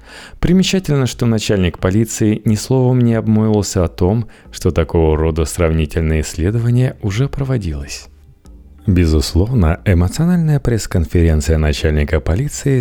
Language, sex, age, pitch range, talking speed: Russian, male, 30-49, 80-115 Hz, 105 wpm